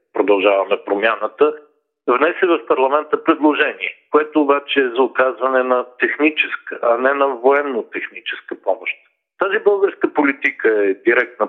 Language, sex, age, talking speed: Bulgarian, male, 50-69, 120 wpm